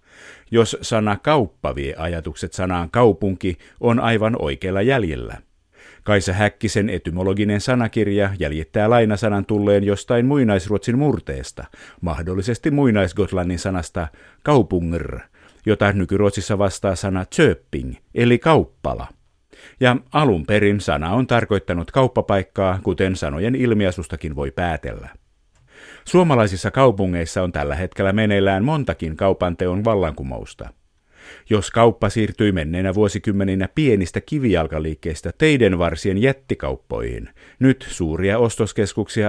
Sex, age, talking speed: male, 50-69, 100 wpm